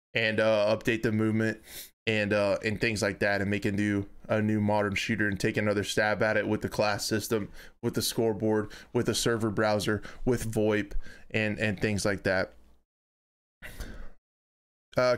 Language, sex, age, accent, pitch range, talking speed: English, male, 20-39, American, 105-125 Hz, 175 wpm